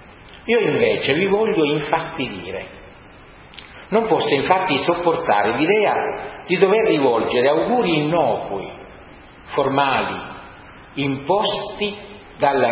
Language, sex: Italian, male